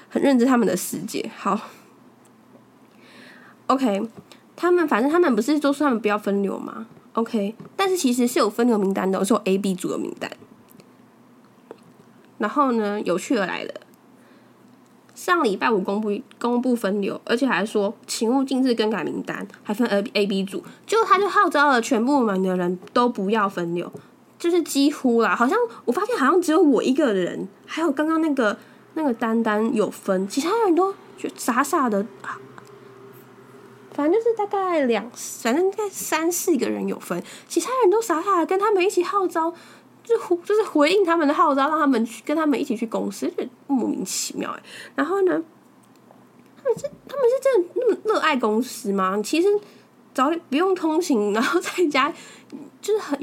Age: 10-29